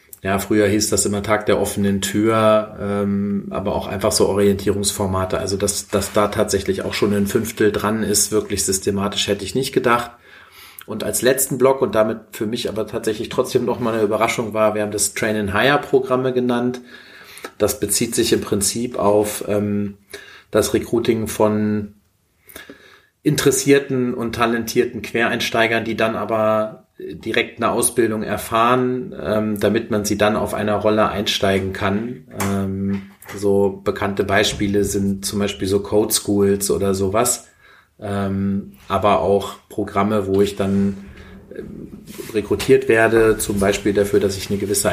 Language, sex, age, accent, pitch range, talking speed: German, male, 40-59, German, 100-110 Hz, 145 wpm